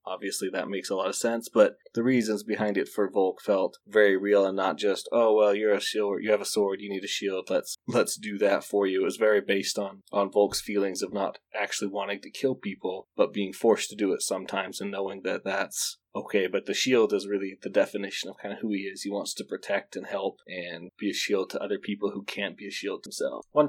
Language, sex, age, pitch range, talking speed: English, male, 20-39, 100-110 Hz, 250 wpm